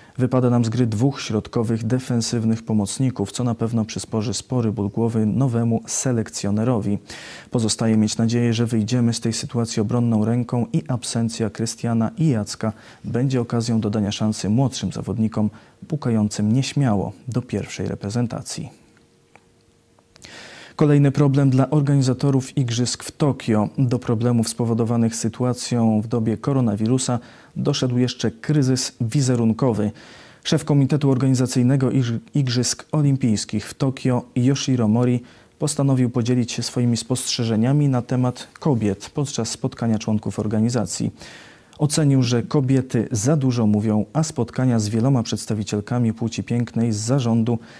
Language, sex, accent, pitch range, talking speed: Polish, male, native, 110-130 Hz, 120 wpm